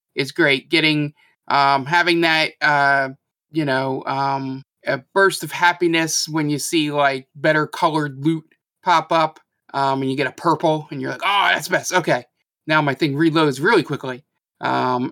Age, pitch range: 20-39, 135-160 Hz